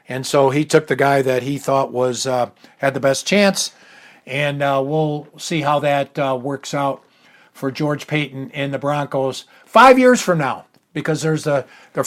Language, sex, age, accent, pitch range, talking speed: English, male, 60-79, American, 140-165 Hz, 190 wpm